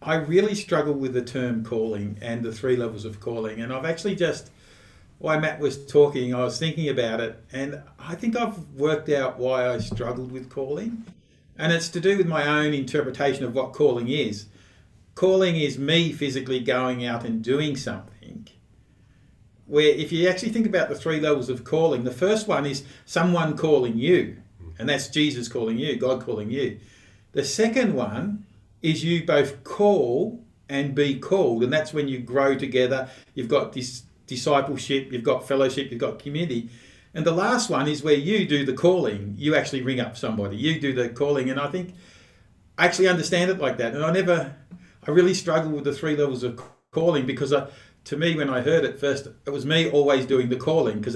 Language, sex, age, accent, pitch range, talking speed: English, male, 50-69, Australian, 125-160 Hz, 195 wpm